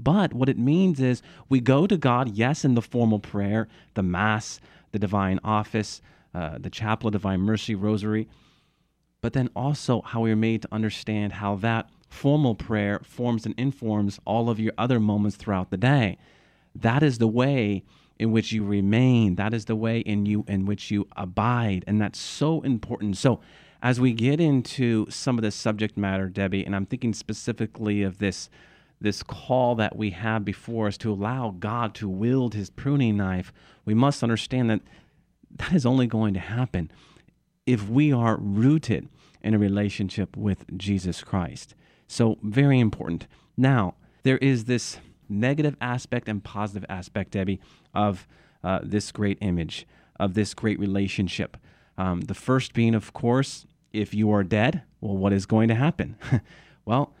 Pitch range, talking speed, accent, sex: 100-125 Hz, 170 wpm, American, male